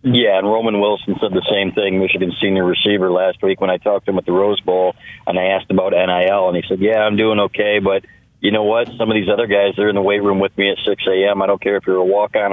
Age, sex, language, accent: 40-59, male, English, American